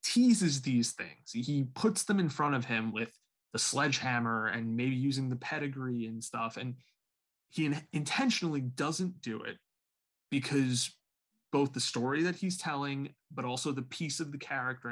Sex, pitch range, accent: male, 120-155 Hz, American